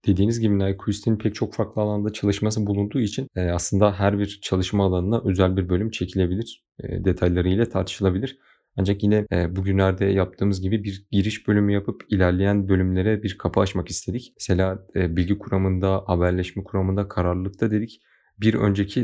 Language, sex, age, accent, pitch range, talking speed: Turkish, male, 30-49, native, 90-105 Hz, 140 wpm